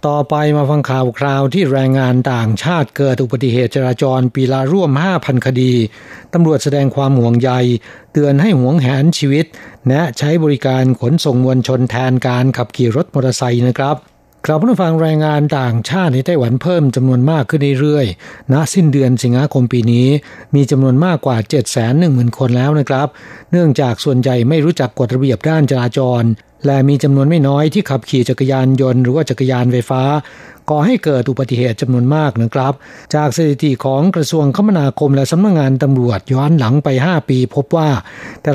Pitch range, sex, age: 130-155 Hz, male, 60-79